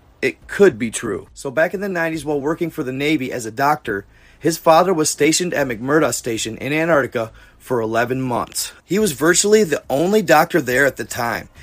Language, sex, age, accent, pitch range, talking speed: English, male, 30-49, American, 130-180 Hz, 200 wpm